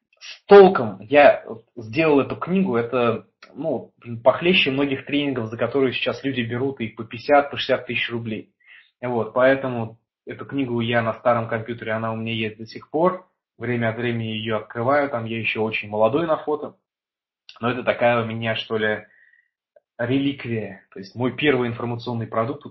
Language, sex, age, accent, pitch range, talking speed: Russian, male, 20-39, native, 115-140 Hz, 165 wpm